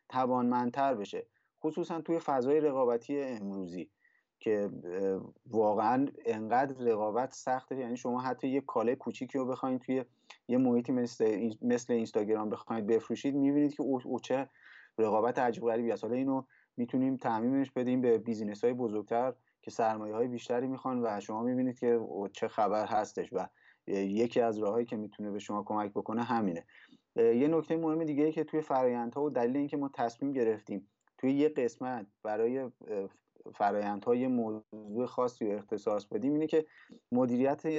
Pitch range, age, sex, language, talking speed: 115-145 Hz, 30-49, male, Persian, 145 wpm